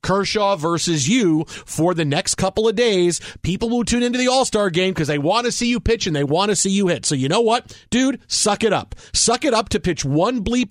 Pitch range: 155-210 Hz